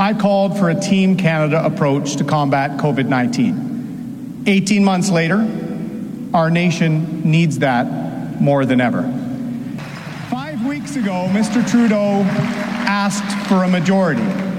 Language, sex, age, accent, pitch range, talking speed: English, male, 40-59, American, 170-225 Hz, 120 wpm